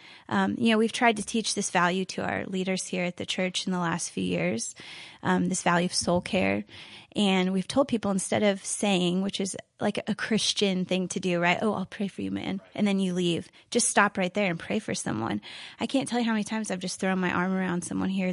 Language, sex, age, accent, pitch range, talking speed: English, female, 20-39, American, 180-205 Hz, 250 wpm